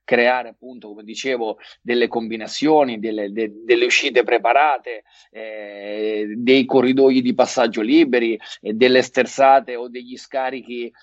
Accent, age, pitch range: native, 30-49, 120-145 Hz